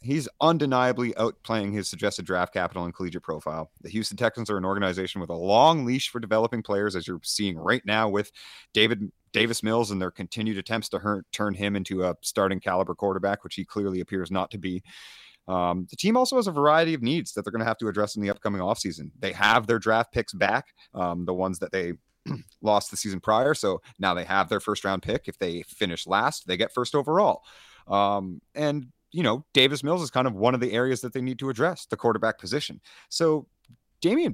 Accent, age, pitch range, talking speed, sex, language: American, 30-49, 100-135 Hz, 220 wpm, male, English